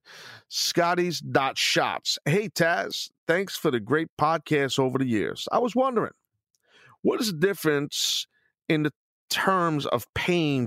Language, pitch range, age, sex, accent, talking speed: English, 120-160 Hz, 40-59, male, American, 130 wpm